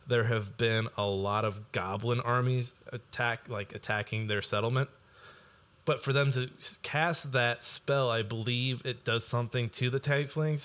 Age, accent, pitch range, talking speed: 20-39, American, 110-145 Hz, 160 wpm